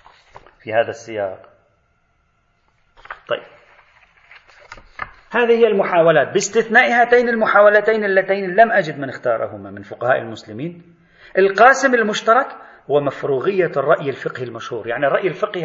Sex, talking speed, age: male, 105 wpm, 40-59